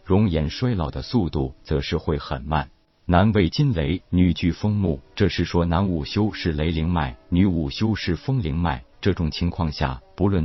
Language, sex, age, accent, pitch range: Chinese, male, 50-69, native, 75-95 Hz